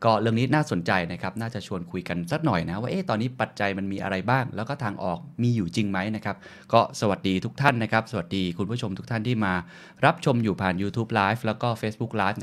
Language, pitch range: Thai, 95-115 Hz